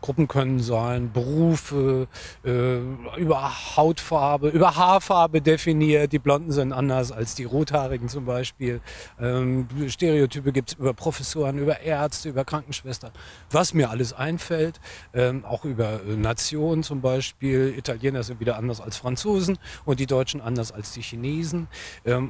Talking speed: 145 wpm